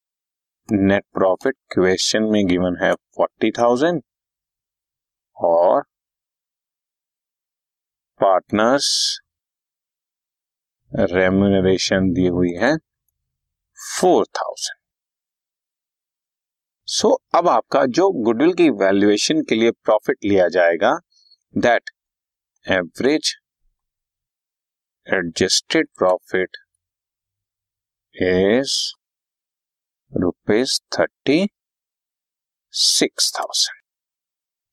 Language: Hindi